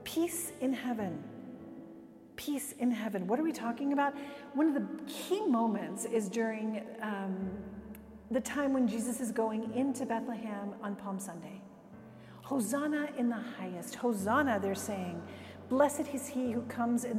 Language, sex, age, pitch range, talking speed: English, female, 40-59, 205-255 Hz, 150 wpm